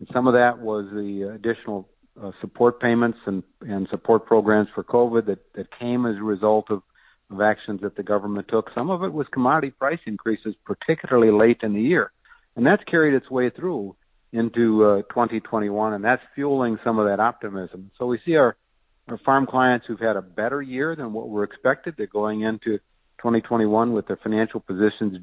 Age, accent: 50-69, American